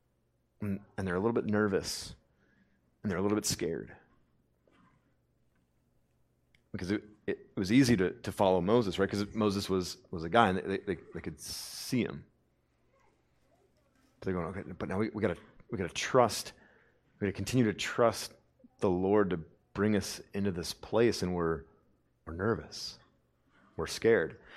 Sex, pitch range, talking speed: male, 100-125 Hz, 165 wpm